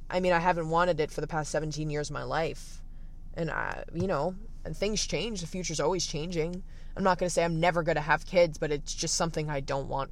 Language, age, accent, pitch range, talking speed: English, 20-39, American, 140-165 Hz, 255 wpm